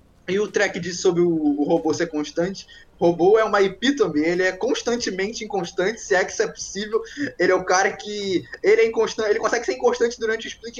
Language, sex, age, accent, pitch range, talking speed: Portuguese, male, 20-39, Brazilian, 165-205 Hz, 215 wpm